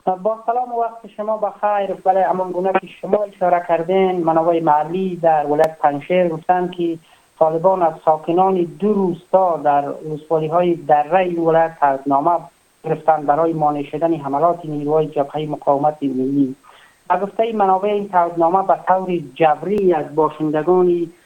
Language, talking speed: Persian, 145 wpm